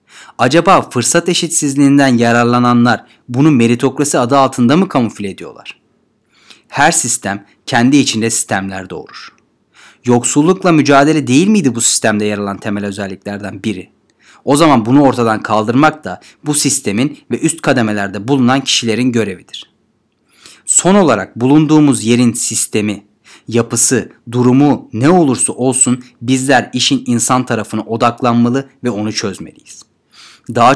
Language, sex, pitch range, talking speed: Turkish, male, 110-130 Hz, 120 wpm